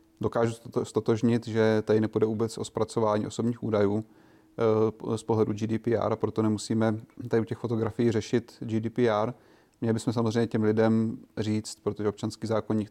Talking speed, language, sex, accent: 145 wpm, Czech, male, native